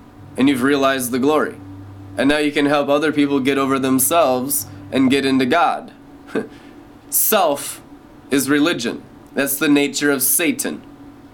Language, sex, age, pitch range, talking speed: English, male, 20-39, 140-185 Hz, 145 wpm